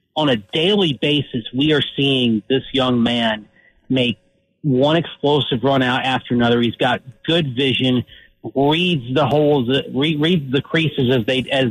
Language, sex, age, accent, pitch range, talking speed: English, male, 40-59, American, 125-150 Hz, 155 wpm